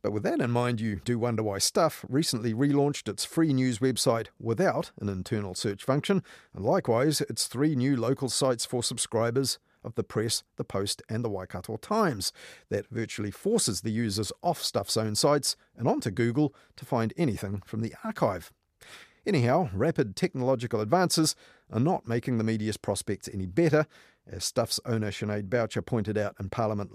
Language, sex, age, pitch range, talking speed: English, male, 50-69, 110-140 Hz, 175 wpm